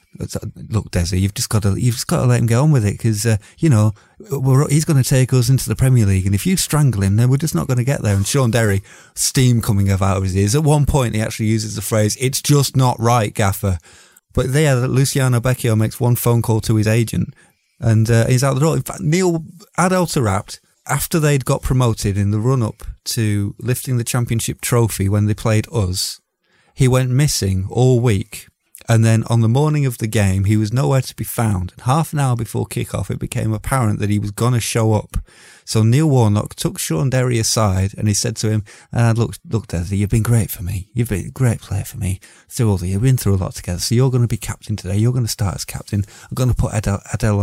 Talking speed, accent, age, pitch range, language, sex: 235 wpm, British, 30-49, 105-130 Hz, English, male